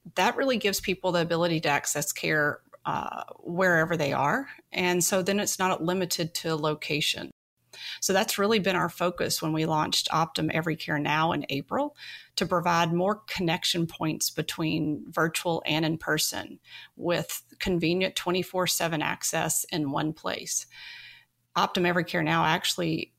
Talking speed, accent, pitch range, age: 145 wpm, American, 155-185 Hz, 40-59